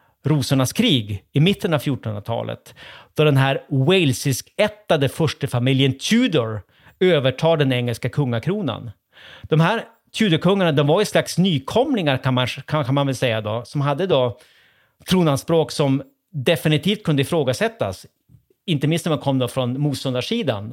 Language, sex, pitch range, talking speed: Swedish, male, 125-160 Hz, 145 wpm